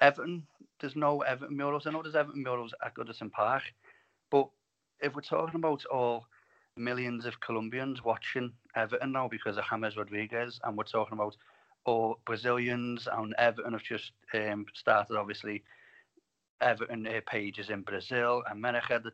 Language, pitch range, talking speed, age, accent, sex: English, 105-130 Hz, 155 wpm, 30-49, British, male